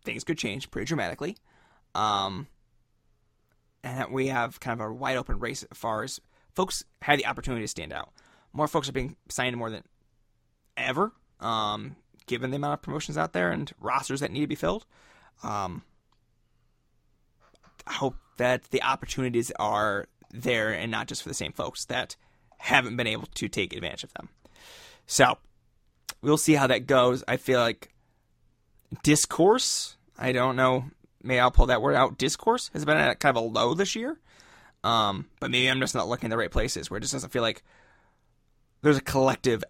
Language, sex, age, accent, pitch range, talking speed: English, male, 20-39, American, 115-140 Hz, 185 wpm